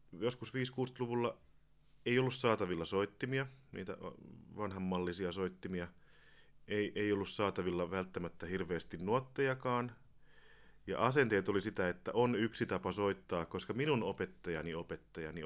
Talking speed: 115 wpm